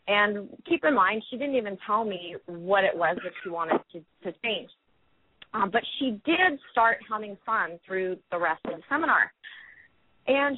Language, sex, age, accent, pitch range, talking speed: English, female, 30-49, American, 180-225 Hz, 180 wpm